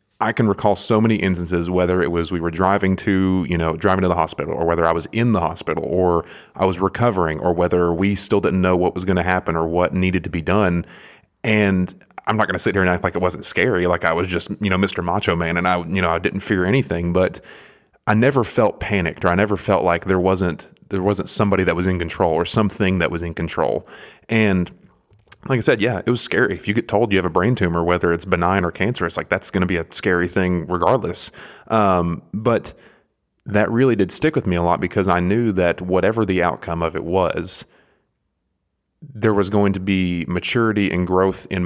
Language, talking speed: English, 235 wpm